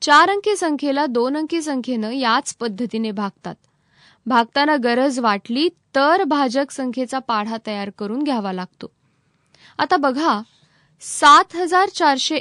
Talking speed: 120 wpm